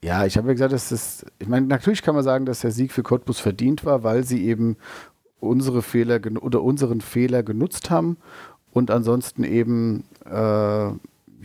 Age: 50-69